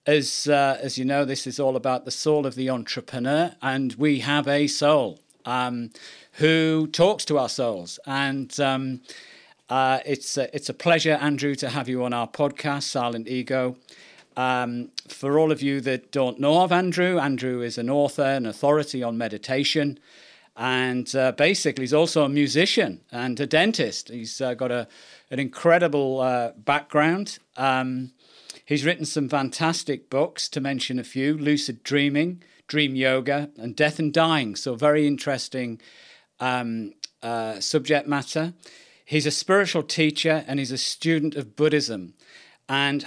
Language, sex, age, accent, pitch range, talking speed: English, male, 40-59, British, 130-150 Hz, 160 wpm